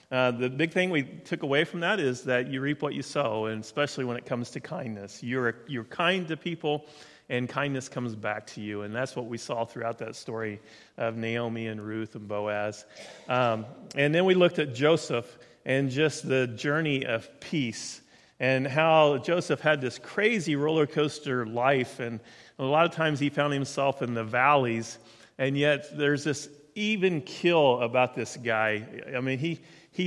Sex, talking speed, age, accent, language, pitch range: male, 190 wpm, 40-59, American, English, 120-155 Hz